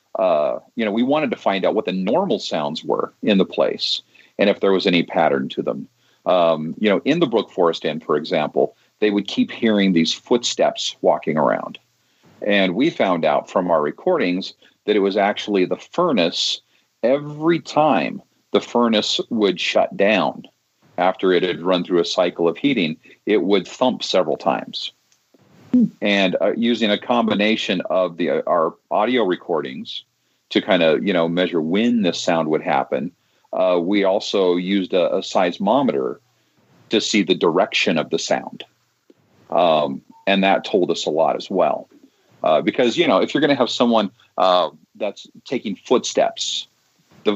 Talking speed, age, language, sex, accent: 170 wpm, 40-59, English, male, American